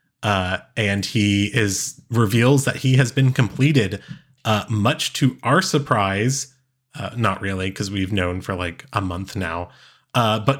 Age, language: 30-49, English